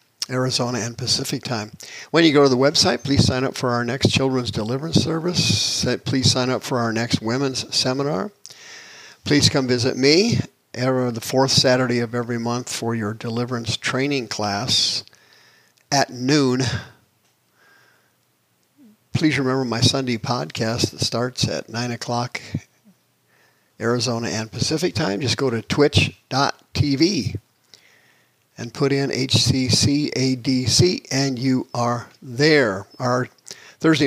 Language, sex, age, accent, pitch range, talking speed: English, male, 50-69, American, 120-140 Hz, 125 wpm